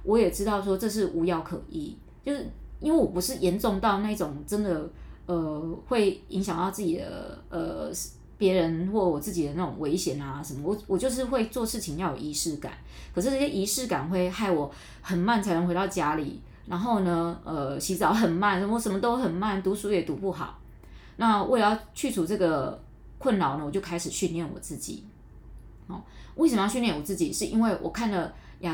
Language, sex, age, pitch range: Chinese, female, 20-39, 170-215 Hz